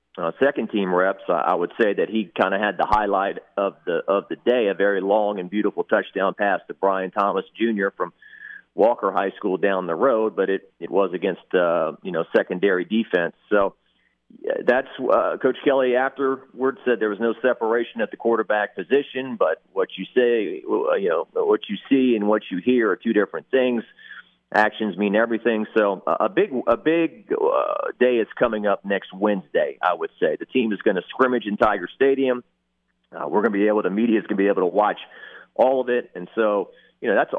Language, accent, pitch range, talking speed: English, American, 100-135 Hz, 210 wpm